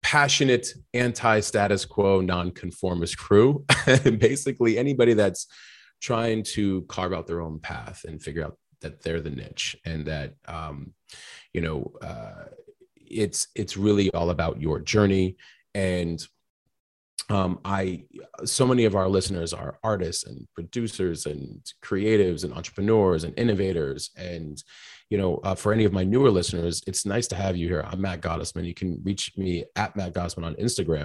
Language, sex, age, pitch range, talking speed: English, male, 30-49, 90-110 Hz, 155 wpm